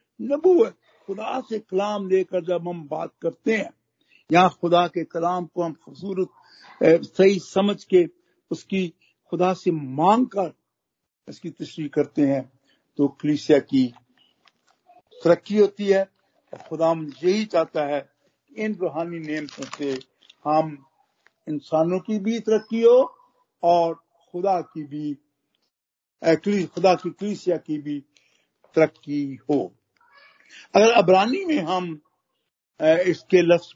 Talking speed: 110 wpm